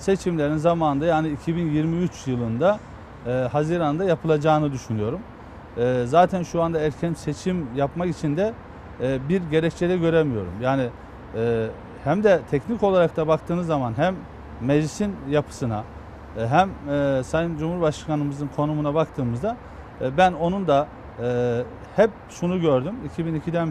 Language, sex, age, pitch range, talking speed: Turkish, male, 40-59, 125-175 Hz, 125 wpm